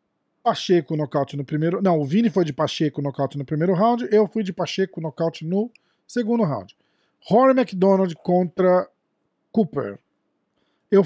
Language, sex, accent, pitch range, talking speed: Portuguese, male, Brazilian, 140-190 Hz, 145 wpm